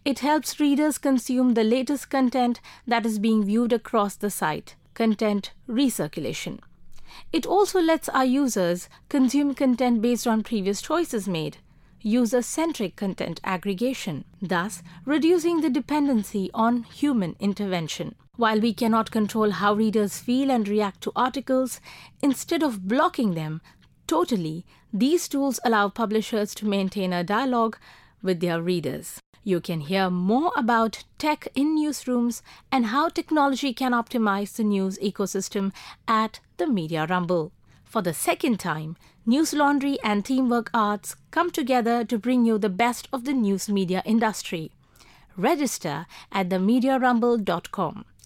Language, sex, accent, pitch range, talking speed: English, female, Indian, 200-265 Hz, 135 wpm